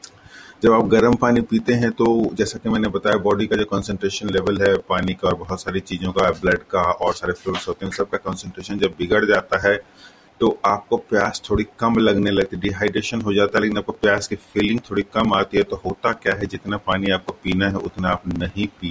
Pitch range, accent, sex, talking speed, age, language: 95-105 Hz, Indian, male, 180 wpm, 30-49, English